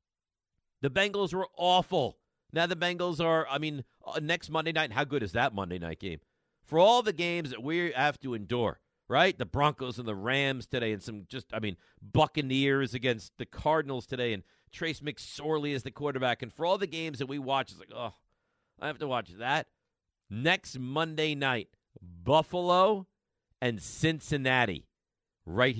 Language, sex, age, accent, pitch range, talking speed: English, male, 50-69, American, 105-160 Hz, 175 wpm